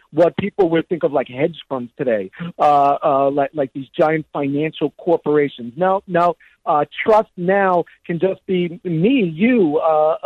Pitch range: 150-190 Hz